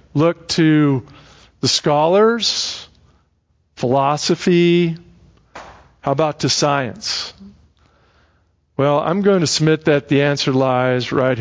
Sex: male